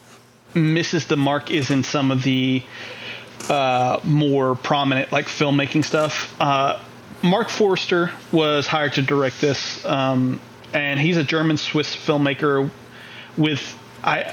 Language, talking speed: English, 125 wpm